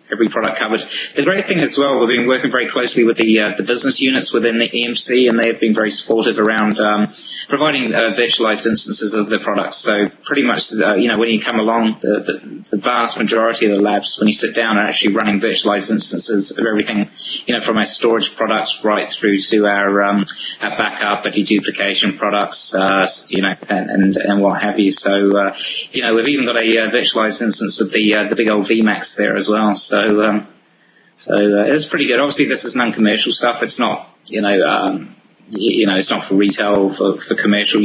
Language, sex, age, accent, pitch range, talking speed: English, male, 20-39, British, 100-115 Hz, 220 wpm